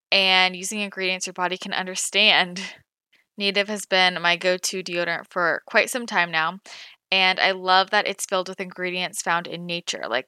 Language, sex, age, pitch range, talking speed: English, female, 10-29, 175-200 Hz, 175 wpm